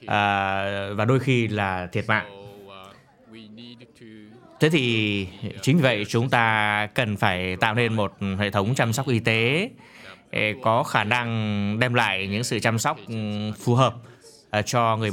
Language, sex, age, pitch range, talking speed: Vietnamese, male, 20-39, 105-130 Hz, 145 wpm